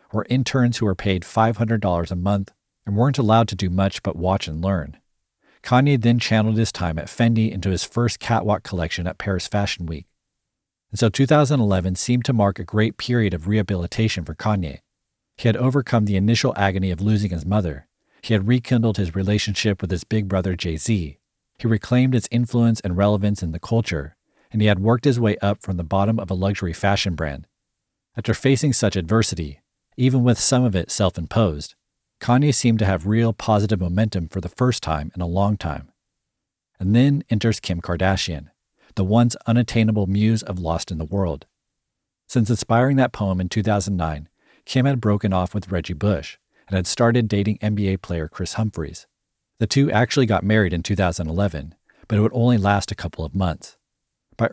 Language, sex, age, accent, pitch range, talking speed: English, male, 40-59, American, 90-115 Hz, 185 wpm